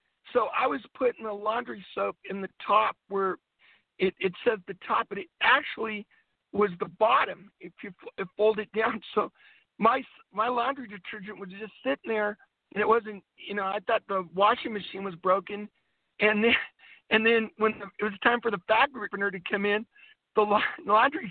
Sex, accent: male, American